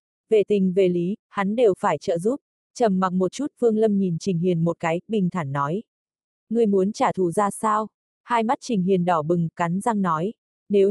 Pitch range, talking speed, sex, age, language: 180-220 Hz, 215 wpm, female, 20-39, Vietnamese